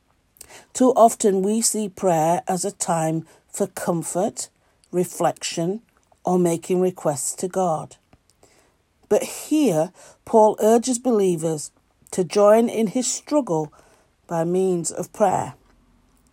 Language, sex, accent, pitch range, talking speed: English, female, British, 175-215 Hz, 110 wpm